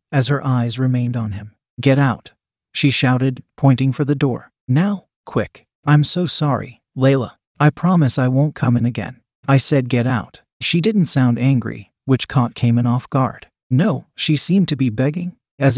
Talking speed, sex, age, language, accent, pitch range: 180 wpm, male, 40-59, English, American, 120-150 Hz